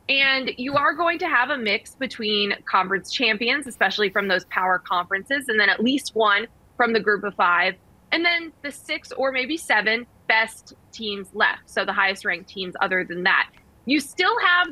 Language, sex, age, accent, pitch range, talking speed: English, female, 20-39, American, 205-275 Hz, 190 wpm